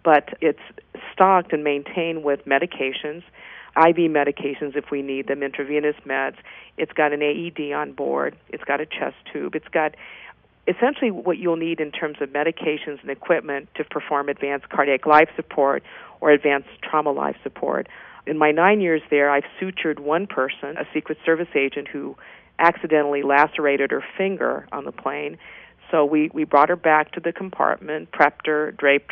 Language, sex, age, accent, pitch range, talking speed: English, female, 50-69, American, 145-165 Hz, 170 wpm